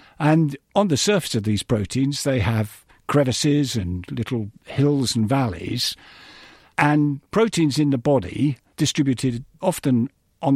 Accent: British